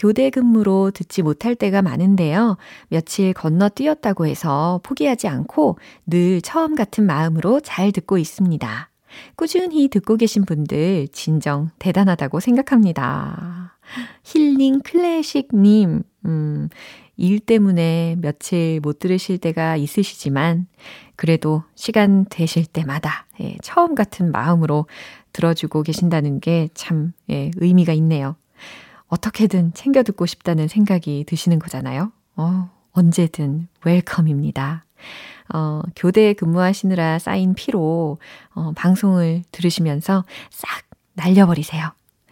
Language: Korean